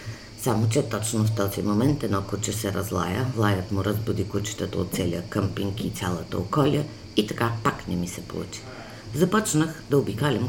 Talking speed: 170 wpm